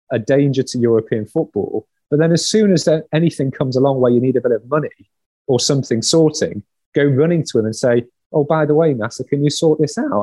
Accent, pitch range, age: British, 115-145 Hz, 30-49